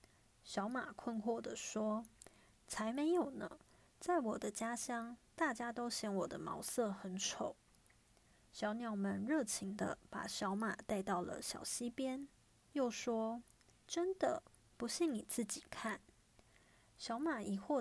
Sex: female